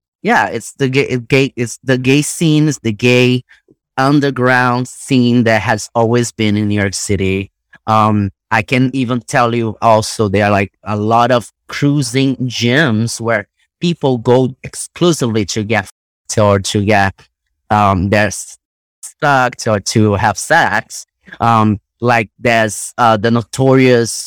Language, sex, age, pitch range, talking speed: English, male, 30-49, 110-130 Hz, 140 wpm